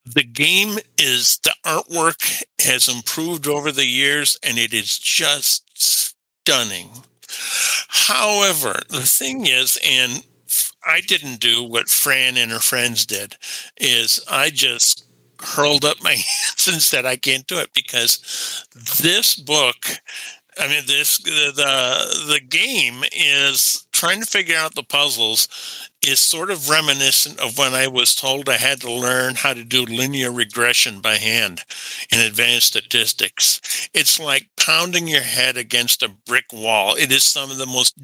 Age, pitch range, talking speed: 50-69, 120-150 Hz, 150 wpm